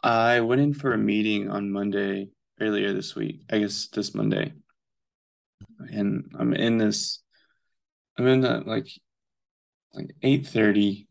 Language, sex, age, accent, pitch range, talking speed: English, male, 20-39, American, 105-130 Hz, 140 wpm